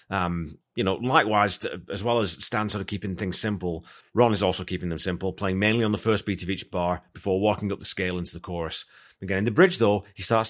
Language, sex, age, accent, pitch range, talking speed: English, male, 30-49, British, 90-105 Hz, 245 wpm